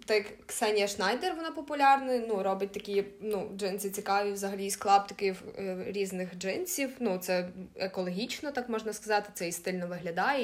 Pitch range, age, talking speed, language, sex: 185-215 Hz, 20-39, 160 wpm, Ukrainian, female